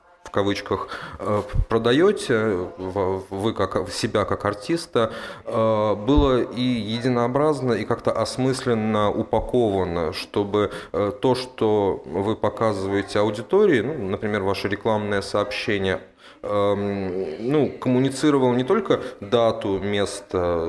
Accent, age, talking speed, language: native, 20-39, 85 wpm, Russian